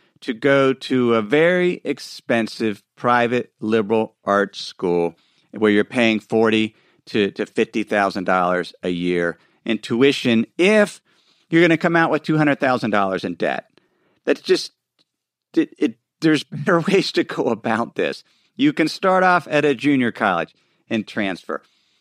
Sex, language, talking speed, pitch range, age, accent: male, English, 145 wpm, 110-160 Hz, 50-69, American